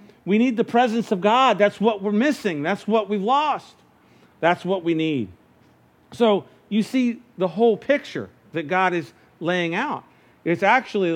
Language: English